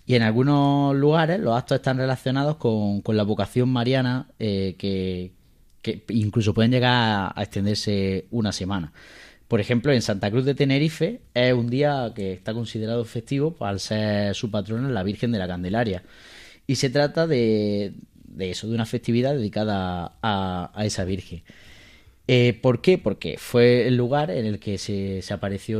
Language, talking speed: Spanish, 170 wpm